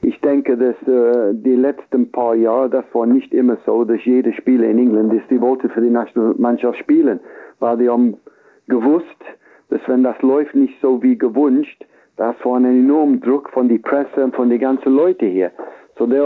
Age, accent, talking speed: 60-79, German, 195 wpm